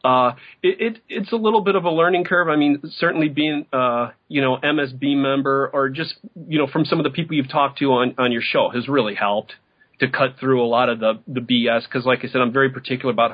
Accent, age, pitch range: American, 40-59, 115-140 Hz